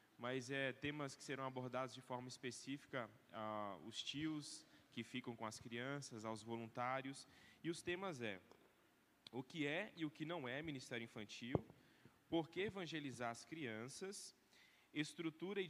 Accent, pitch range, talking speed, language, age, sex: Brazilian, 120-150 Hz, 155 wpm, Portuguese, 10-29, male